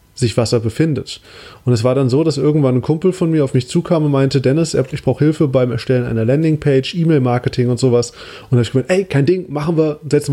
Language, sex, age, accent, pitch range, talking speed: German, male, 30-49, German, 120-150 Hz, 245 wpm